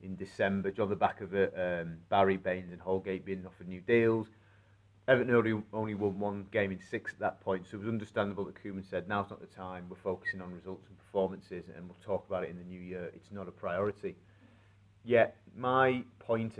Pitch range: 95-110 Hz